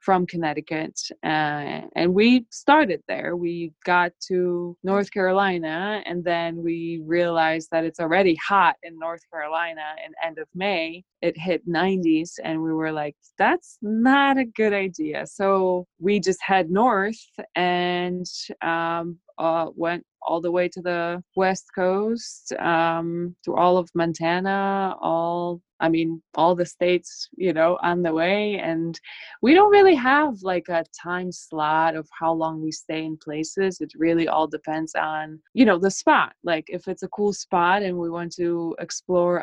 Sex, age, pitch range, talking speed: female, 20-39, 165-195 Hz, 165 wpm